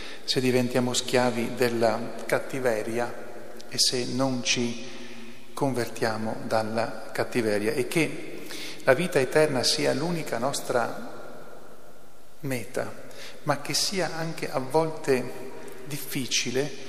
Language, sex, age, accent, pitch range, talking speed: Italian, male, 40-59, native, 120-135 Hz, 100 wpm